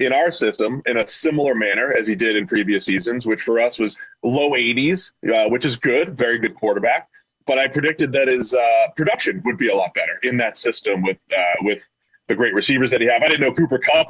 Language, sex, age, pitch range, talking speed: English, male, 30-49, 115-165 Hz, 235 wpm